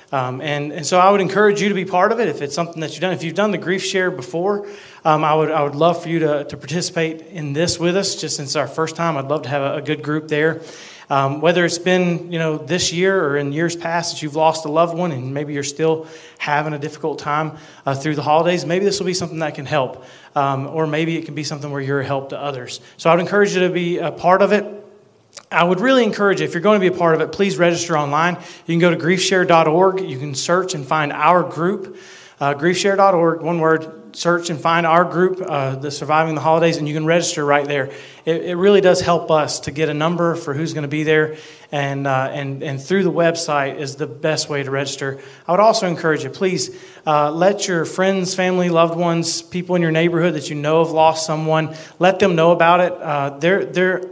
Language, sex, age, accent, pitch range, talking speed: English, male, 30-49, American, 150-180 Hz, 250 wpm